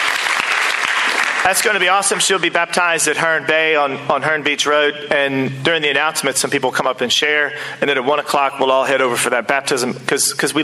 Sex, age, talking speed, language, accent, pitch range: male, 40-59, 225 wpm, English, American, 140-175 Hz